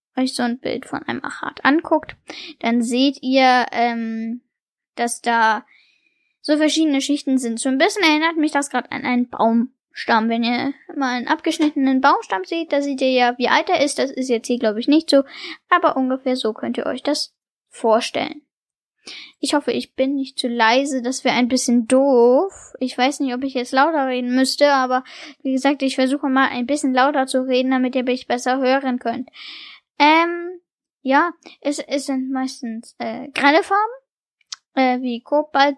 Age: 10-29